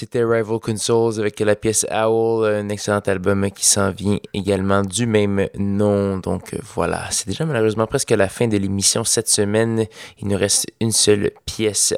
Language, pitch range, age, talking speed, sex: French, 95-110 Hz, 20-39, 180 wpm, male